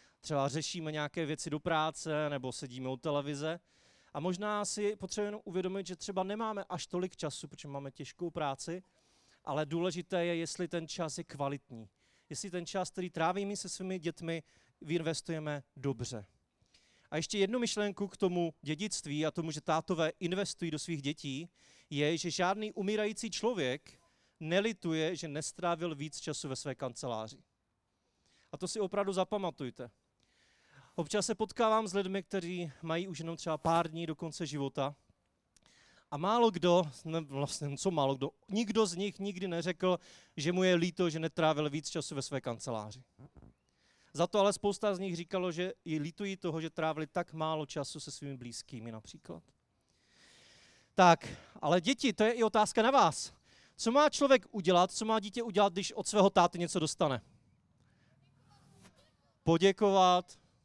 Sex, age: male, 30-49